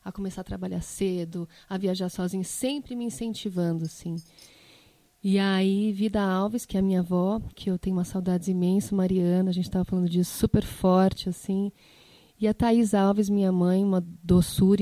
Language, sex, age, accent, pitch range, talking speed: Portuguese, female, 30-49, Brazilian, 185-220 Hz, 180 wpm